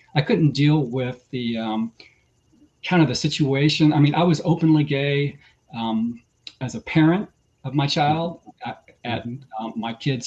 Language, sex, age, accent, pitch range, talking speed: English, male, 40-59, American, 125-155 Hz, 165 wpm